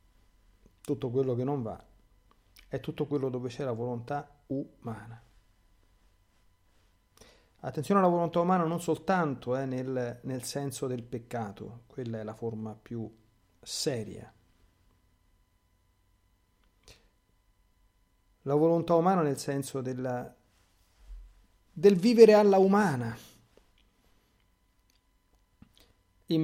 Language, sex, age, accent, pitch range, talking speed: Italian, male, 50-69, native, 100-130 Hz, 95 wpm